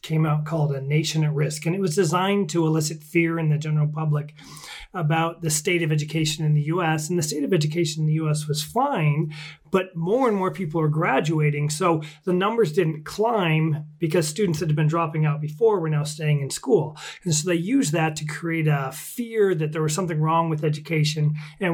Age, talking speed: 30-49, 215 wpm